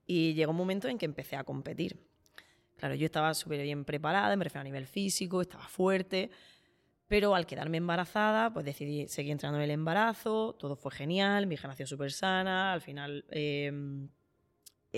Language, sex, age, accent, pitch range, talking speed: Spanish, female, 20-39, Spanish, 155-205 Hz, 170 wpm